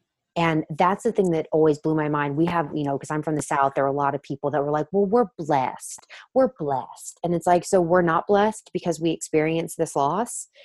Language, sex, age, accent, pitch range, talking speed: English, female, 20-39, American, 145-170 Hz, 250 wpm